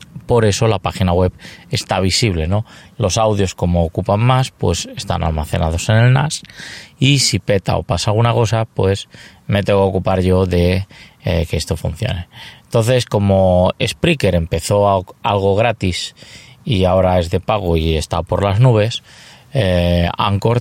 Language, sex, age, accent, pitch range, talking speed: Spanish, male, 20-39, Spanish, 90-115 Hz, 160 wpm